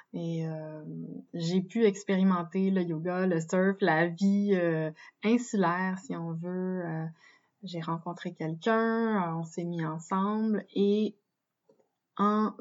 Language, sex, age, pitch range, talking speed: French, female, 20-39, 170-205 Hz, 125 wpm